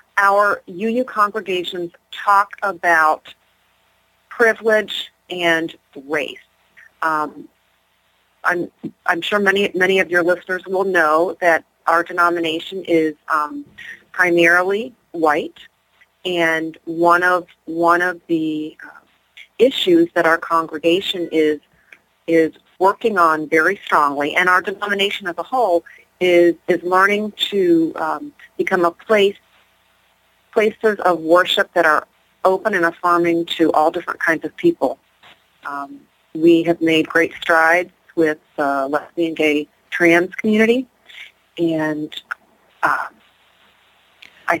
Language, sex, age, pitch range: English, female, 40-59, 160-195 Hz